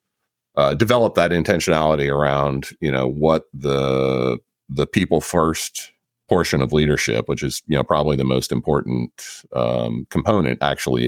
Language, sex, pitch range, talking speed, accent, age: English, male, 65-80 Hz, 145 wpm, American, 40-59